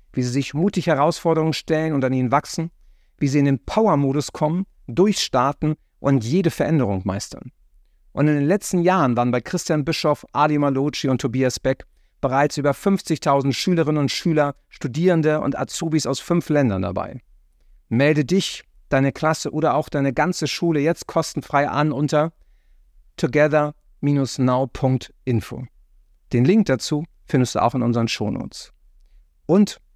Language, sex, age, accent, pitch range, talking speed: German, male, 50-69, German, 115-150 Hz, 145 wpm